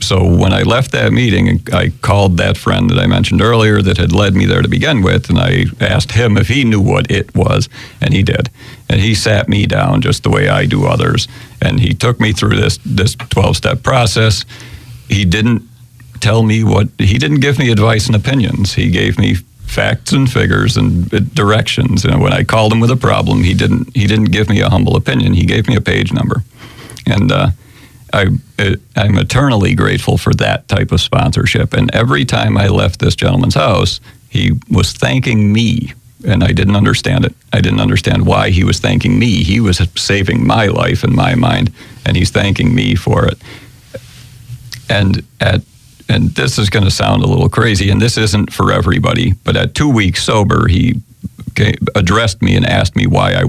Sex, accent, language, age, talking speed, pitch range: male, American, English, 50-69, 200 wpm, 105-125 Hz